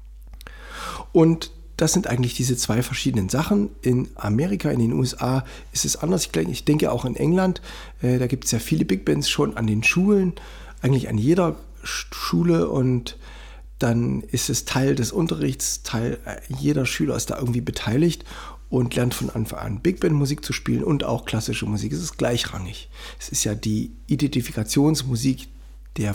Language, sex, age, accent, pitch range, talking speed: German, male, 60-79, German, 115-145 Hz, 175 wpm